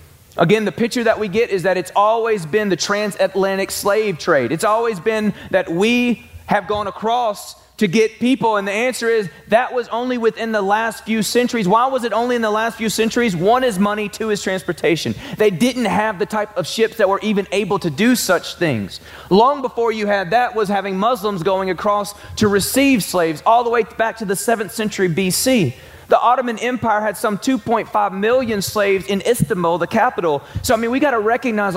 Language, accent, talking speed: English, American, 205 wpm